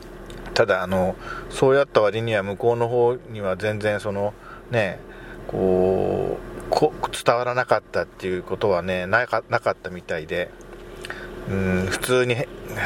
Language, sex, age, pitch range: Japanese, male, 40-59, 95-125 Hz